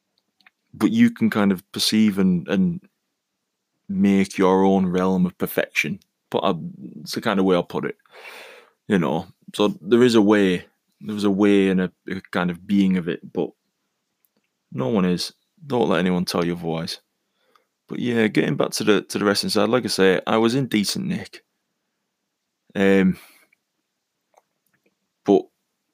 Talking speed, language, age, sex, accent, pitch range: 165 wpm, English, 20-39, male, British, 95-110 Hz